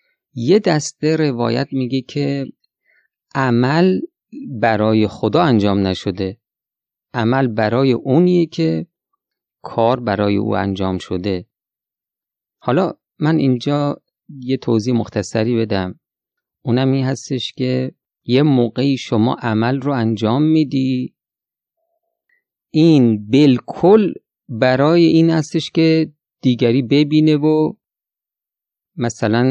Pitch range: 115-155 Hz